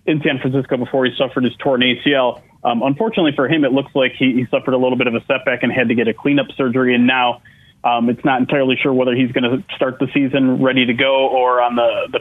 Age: 30-49